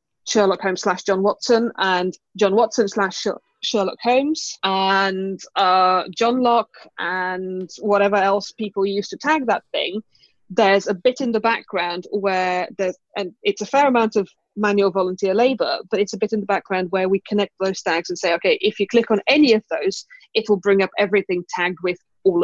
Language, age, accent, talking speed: English, 20-39, British, 190 wpm